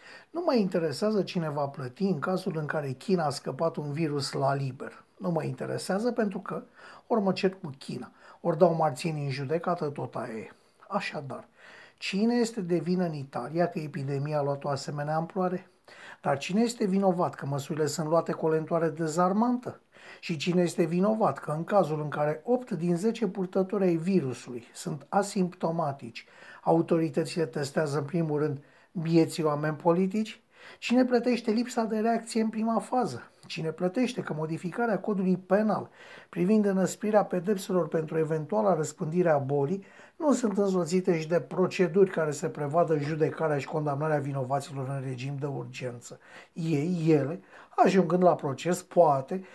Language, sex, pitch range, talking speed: Romanian, male, 150-195 Hz, 155 wpm